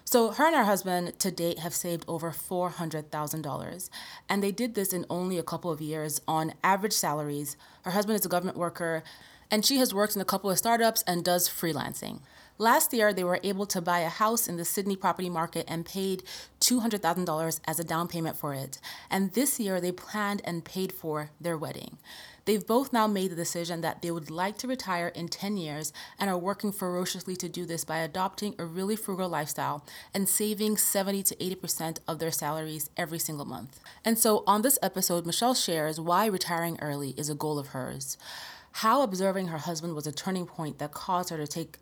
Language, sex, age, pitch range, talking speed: English, female, 30-49, 160-195 Hz, 205 wpm